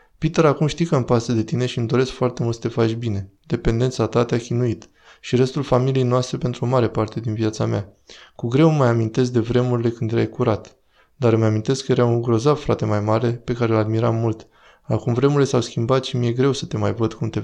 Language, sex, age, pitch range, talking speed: Romanian, male, 20-39, 110-125 Hz, 245 wpm